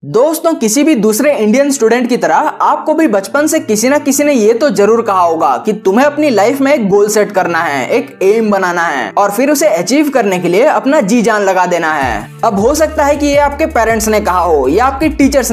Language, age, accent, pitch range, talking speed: Hindi, 20-39, native, 210-295 Hz, 240 wpm